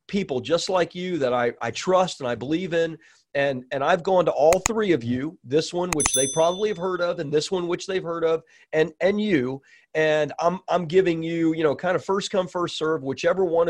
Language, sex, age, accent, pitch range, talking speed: English, male, 40-59, American, 145-190 Hz, 235 wpm